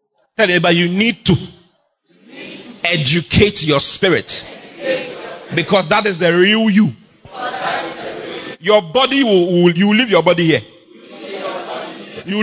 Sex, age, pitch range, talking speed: male, 30-49, 140-200 Hz, 110 wpm